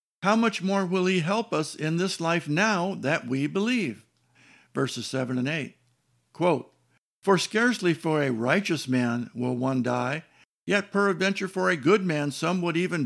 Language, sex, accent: English, male, American